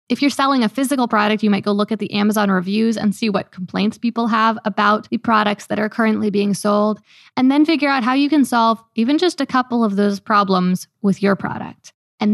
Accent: American